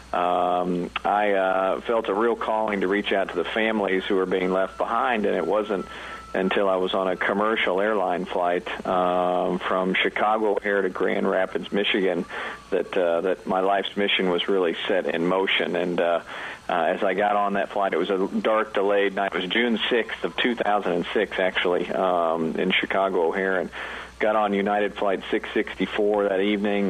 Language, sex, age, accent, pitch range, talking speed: English, male, 50-69, American, 90-105 Hz, 185 wpm